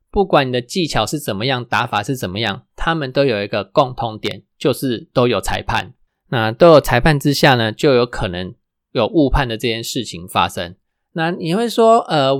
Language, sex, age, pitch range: Chinese, male, 20-39, 115-150 Hz